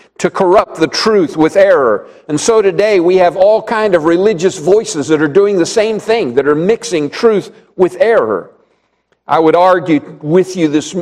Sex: male